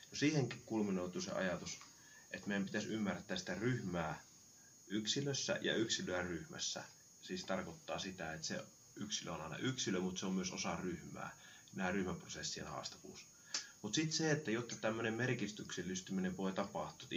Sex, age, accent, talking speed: male, 30-49, native, 145 wpm